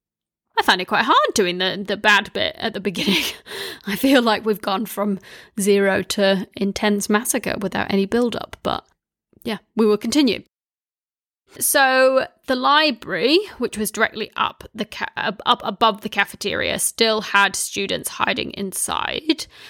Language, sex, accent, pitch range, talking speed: English, female, British, 200-245 Hz, 150 wpm